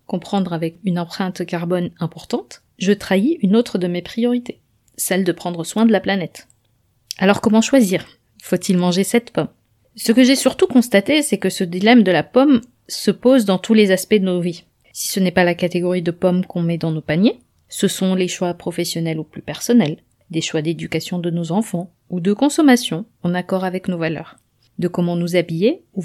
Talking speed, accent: 205 wpm, French